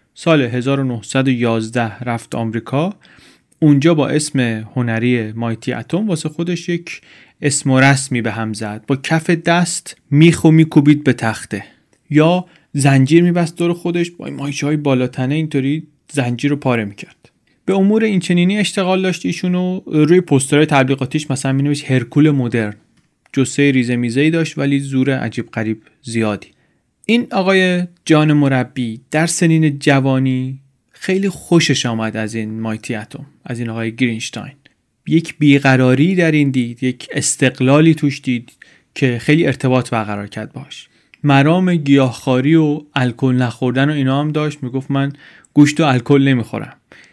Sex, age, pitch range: male, 30-49, 125-160 Hz